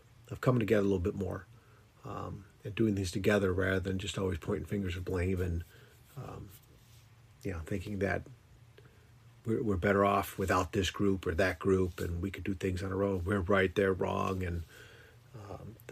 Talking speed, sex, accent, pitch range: 185 wpm, male, American, 100-120 Hz